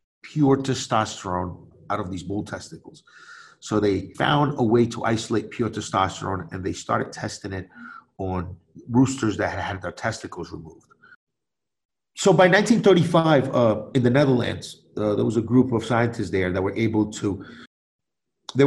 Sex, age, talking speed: male, 30-49, 160 wpm